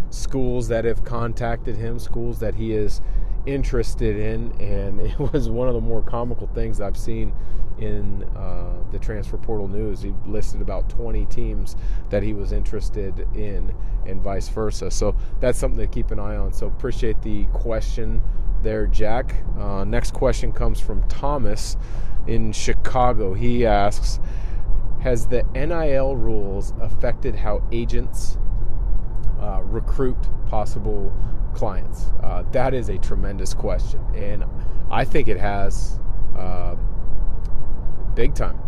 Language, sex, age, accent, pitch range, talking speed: English, male, 30-49, American, 100-115 Hz, 140 wpm